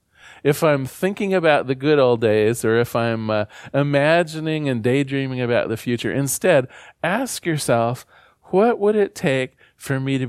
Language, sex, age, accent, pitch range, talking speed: English, male, 40-59, American, 115-160 Hz, 165 wpm